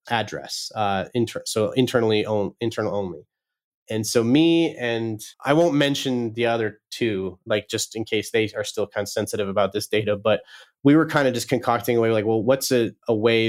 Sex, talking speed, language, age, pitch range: male, 205 wpm, English, 30-49, 105-120 Hz